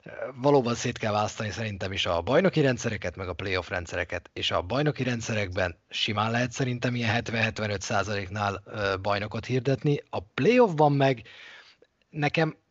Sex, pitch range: male, 100-145 Hz